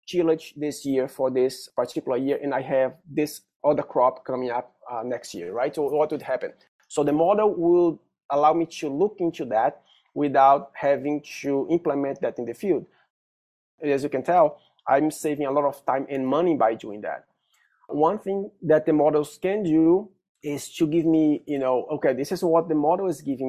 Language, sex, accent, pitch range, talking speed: English, male, Brazilian, 135-175 Hz, 195 wpm